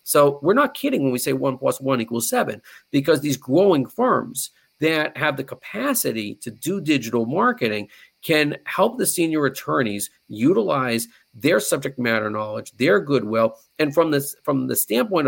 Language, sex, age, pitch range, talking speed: English, male, 40-59, 115-150 Hz, 165 wpm